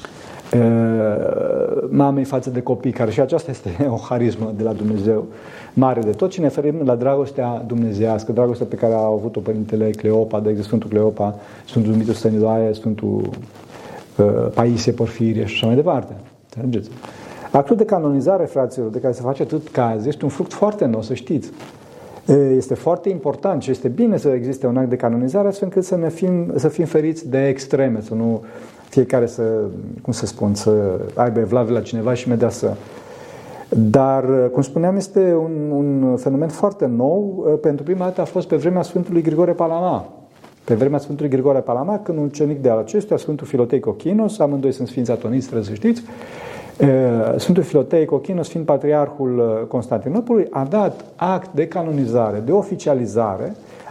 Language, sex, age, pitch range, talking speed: Romanian, male, 40-59, 115-160 Hz, 165 wpm